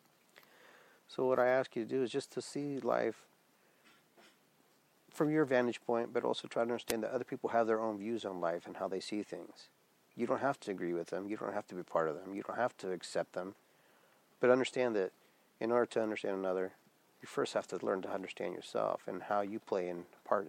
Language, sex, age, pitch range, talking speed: English, male, 50-69, 95-120 Hz, 230 wpm